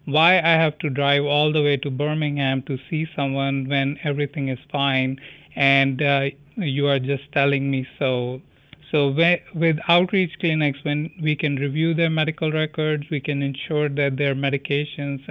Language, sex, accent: English, male, Indian